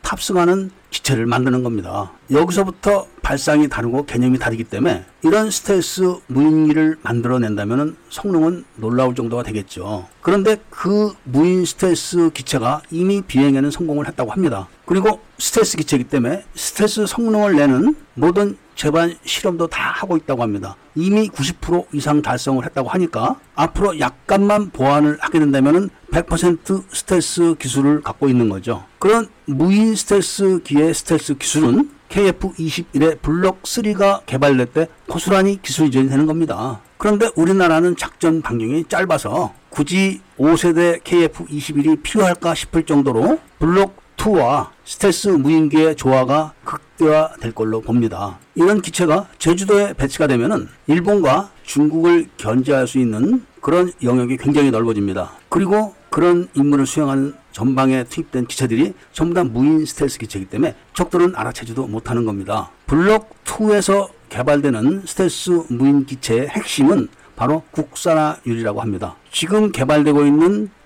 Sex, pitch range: male, 135-185 Hz